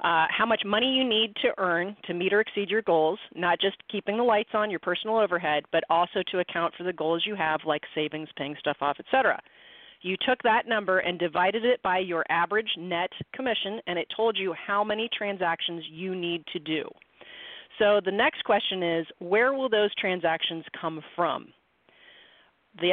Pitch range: 170-215 Hz